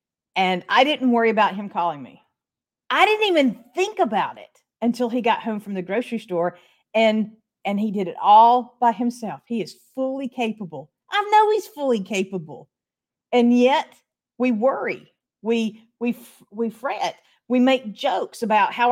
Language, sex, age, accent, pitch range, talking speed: English, female, 50-69, American, 195-265 Hz, 165 wpm